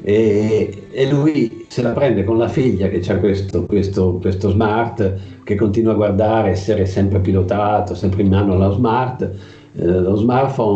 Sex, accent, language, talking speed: male, native, Italian, 155 wpm